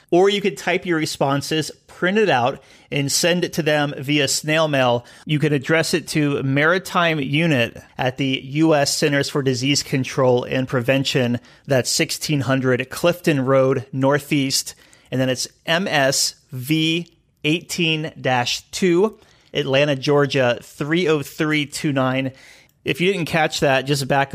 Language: English